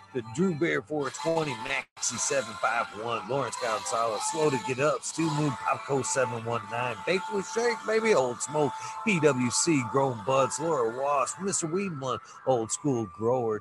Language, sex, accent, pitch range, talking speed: English, male, American, 115-175 Hz, 135 wpm